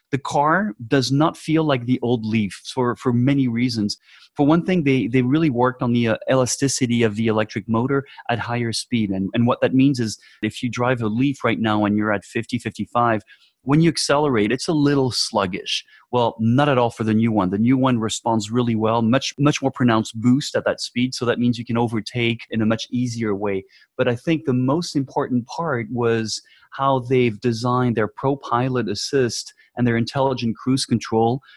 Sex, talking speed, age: male, 205 wpm, 30-49